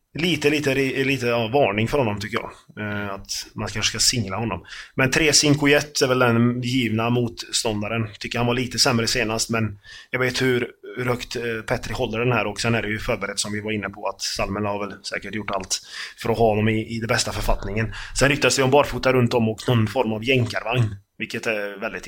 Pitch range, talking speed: 105-125 Hz, 215 wpm